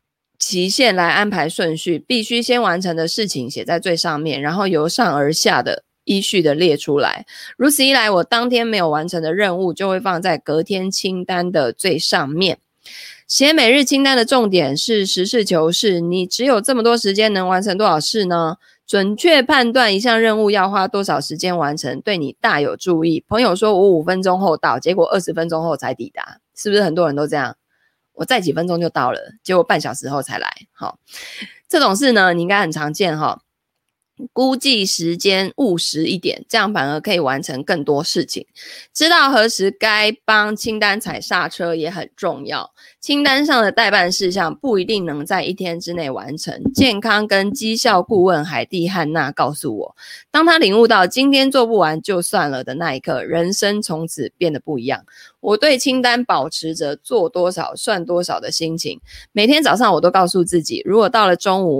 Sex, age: female, 20-39